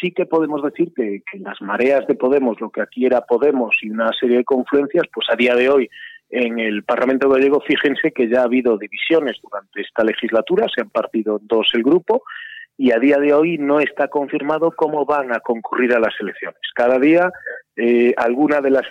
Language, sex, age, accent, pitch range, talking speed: Spanish, male, 40-59, Spanish, 125-180 Hz, 205 wpm